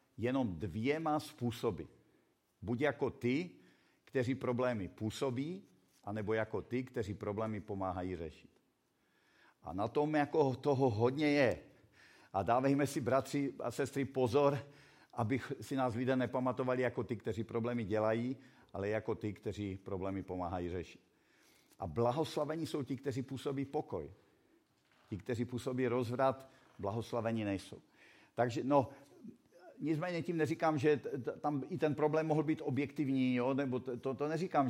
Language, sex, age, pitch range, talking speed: Czech, male, 50-69, 115-145 Hz, 135 wpm